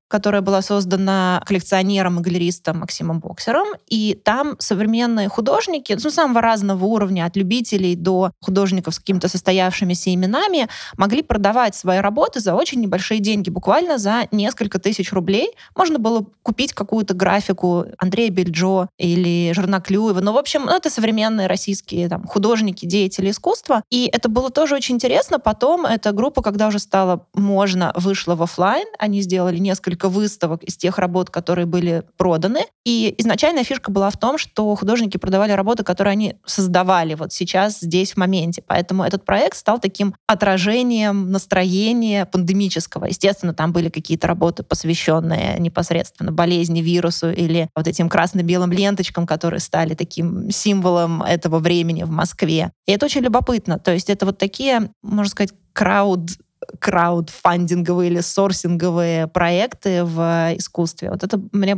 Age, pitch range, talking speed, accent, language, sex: 20-39, 175-210 Hz, 150 wpm, native, Russian, female